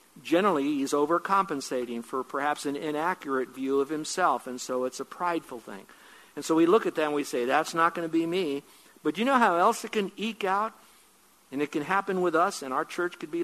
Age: 60-79